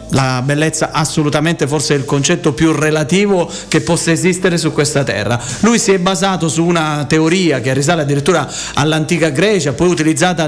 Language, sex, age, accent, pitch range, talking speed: Italian, male, 40-59, native, 150-190 Hz, 160 wpm